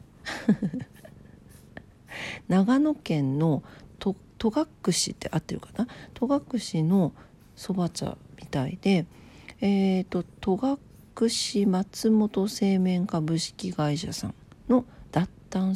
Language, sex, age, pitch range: Japanese, female, 50-69, 160-225 Hz